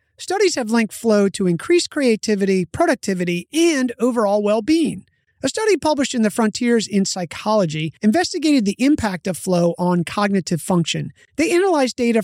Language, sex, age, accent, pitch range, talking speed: English, male, 30-49, American, 180-265 Hz, 150 wpm